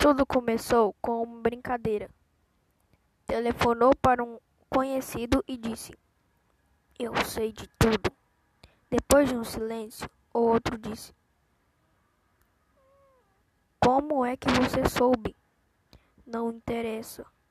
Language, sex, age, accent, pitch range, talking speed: Portuguese, female, 10-29, Brazilian, 230-265 Hz, 100 wpm